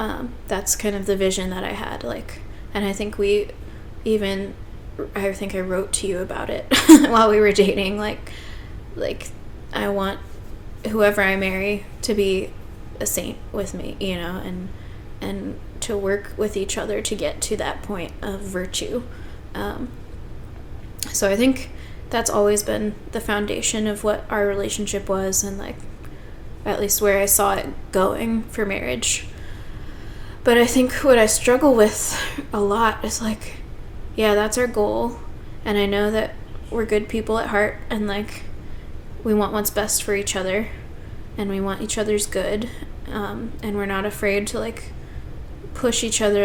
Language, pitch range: English, 195-220 Hz